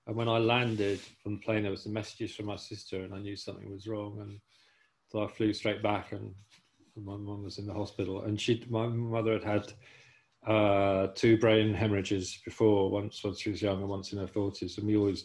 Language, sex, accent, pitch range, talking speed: English, male, British, 105-115 Hz, 230 wpm